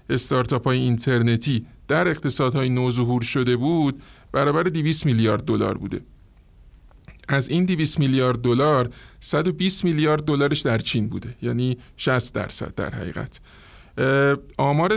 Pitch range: 115-145 Hz